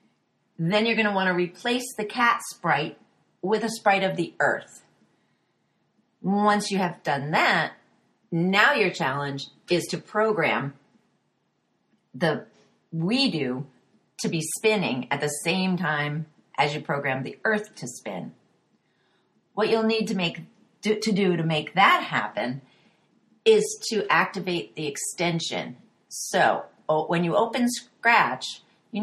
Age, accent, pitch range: 40-59, American, 155-215 Hz